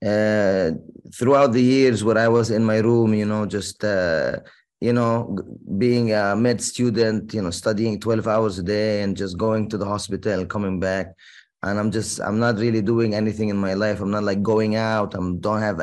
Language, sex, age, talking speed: Arabic, male, 20-39, 205 wpm